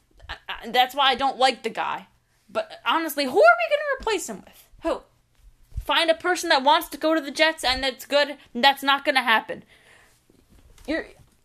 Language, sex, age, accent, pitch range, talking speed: English, female, 20-39, American, 210-290 Hz, 200 wpm